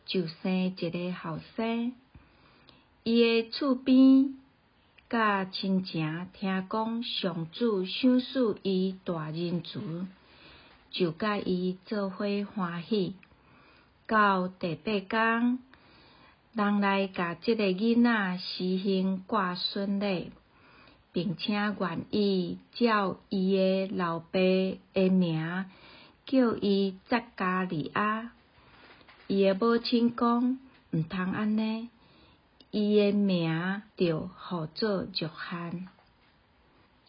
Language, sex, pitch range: Chinese, female, 185-225 Hz